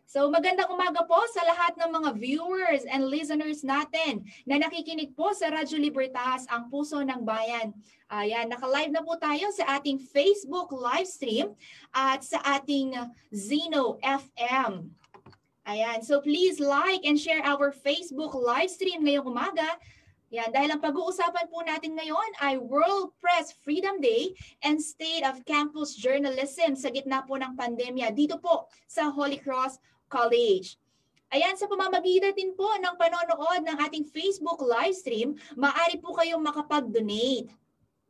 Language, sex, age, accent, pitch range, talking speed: Filipino, female, 20-39, native, 270-335 Hz, 145 wpm